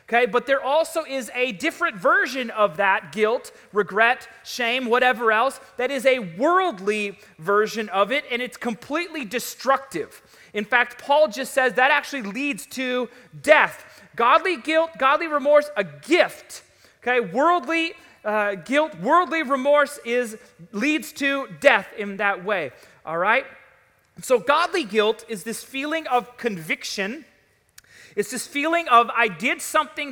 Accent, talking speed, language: American, 145 wpm, English